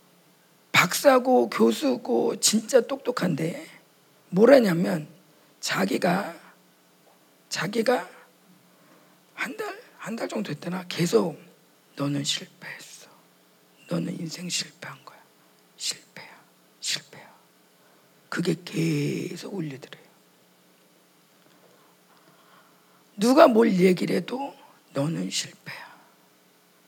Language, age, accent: Korean, 40-59, native